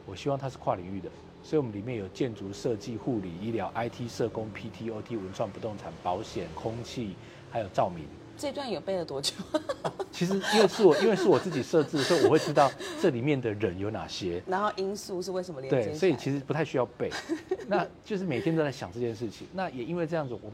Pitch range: 105-150 Hz